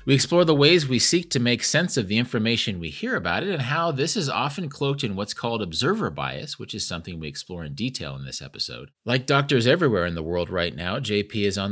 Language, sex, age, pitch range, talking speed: English, male, 30-49, 100-140 Hz, 245 wpm